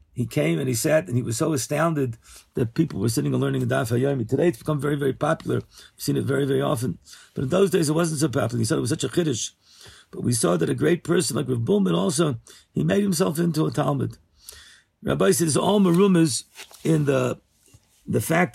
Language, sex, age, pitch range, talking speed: English, male, 50-69, 130-170 Hz, 225 wpm